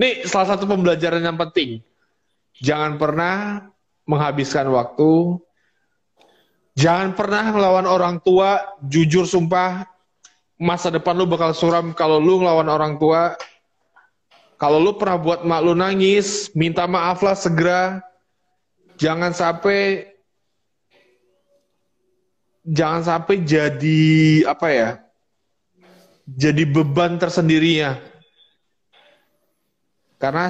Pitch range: 145-185 Hz